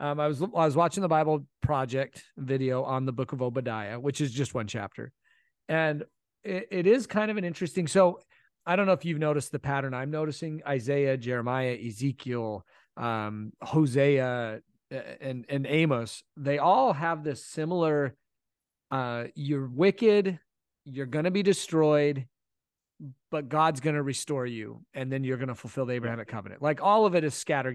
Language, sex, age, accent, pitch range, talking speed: English, male, 40-59, American, 125-160 Hz, 175 wpm